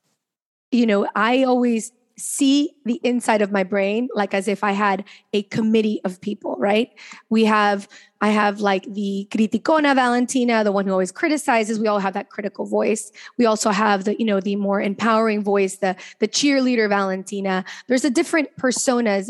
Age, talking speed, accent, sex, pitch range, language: 20-39, 175 wpm, American, female, 205-250 Hz, English